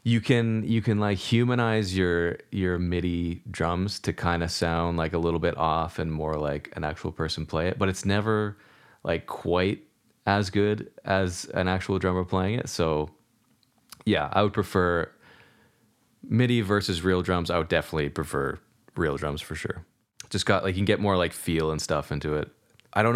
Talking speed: 185 wpm